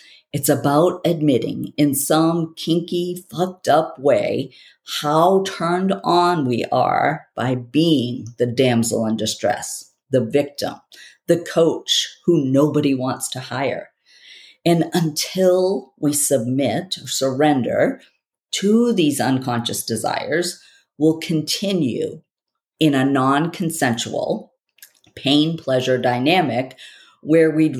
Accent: American